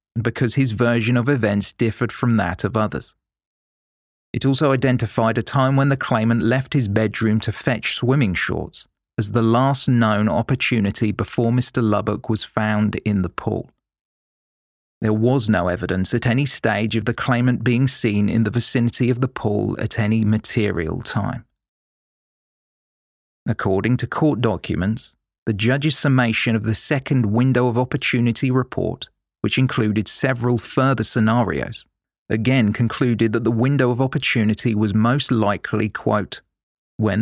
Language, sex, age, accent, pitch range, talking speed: English, male, 40-59, British, 110-125 Hz, 145 wpm